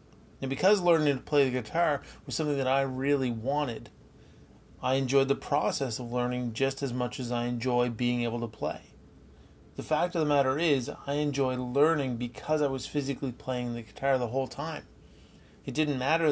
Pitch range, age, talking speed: 120-140 Hz, 30-49, 190 wpm